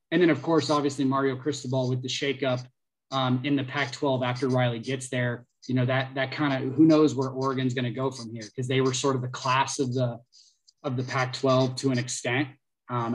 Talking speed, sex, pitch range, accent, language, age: 225 wpm, male, 125-140 Hz, American, English, 20-39